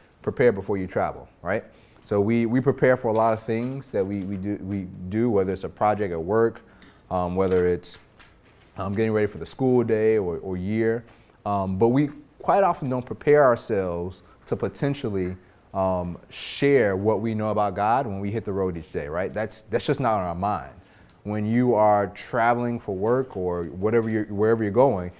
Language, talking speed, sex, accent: English, 200 wpm, male, American